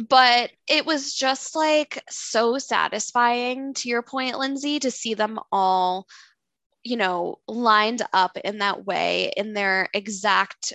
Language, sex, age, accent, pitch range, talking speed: English, female, 10-29, American, 195-245 Hz, 140 wpm